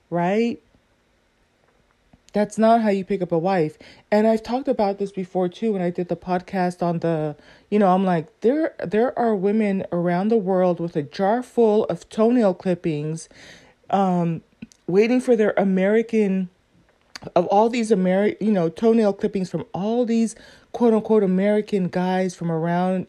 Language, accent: English, American